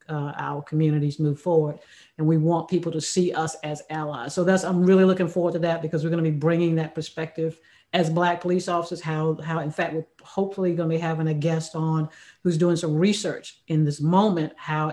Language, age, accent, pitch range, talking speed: English, 50-69, American, 160-190 Hz, 215 wpm